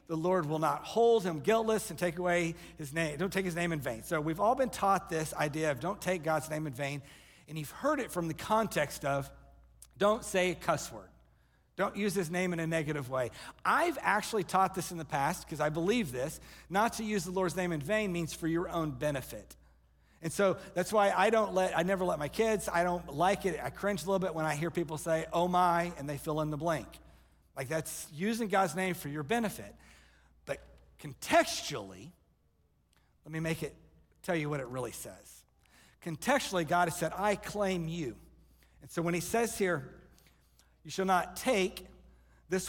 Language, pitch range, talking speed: English, 155-195 Hz, 210 wpm